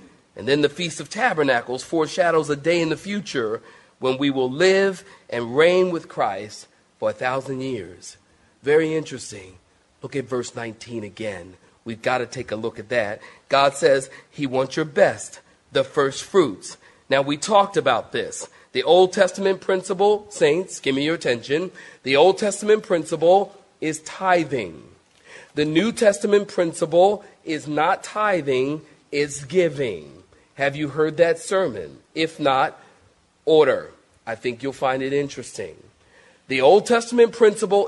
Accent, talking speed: American, 150 wpm